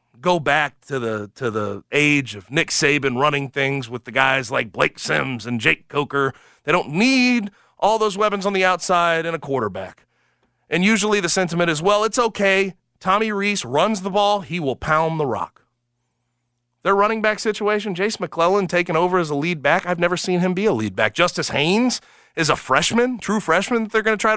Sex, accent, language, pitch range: male, American, English, 140-215 Hz